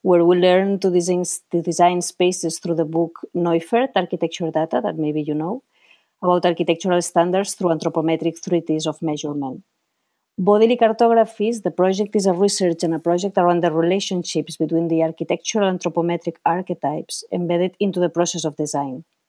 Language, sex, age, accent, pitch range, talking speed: English, female, 30-49, Spanish, 165-190 Hz, 150 wpm